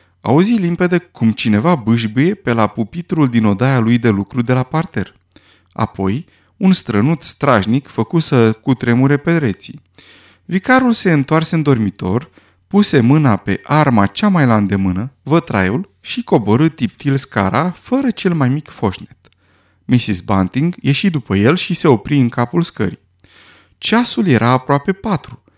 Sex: male